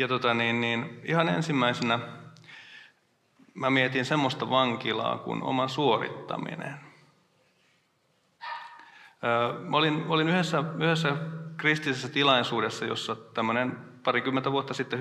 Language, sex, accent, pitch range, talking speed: Finnish, male, native, 115-155 Hz, 105 wpm